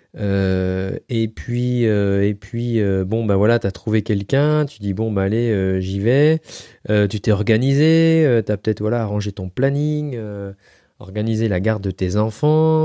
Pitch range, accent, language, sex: 100-125 Hz, French, French, male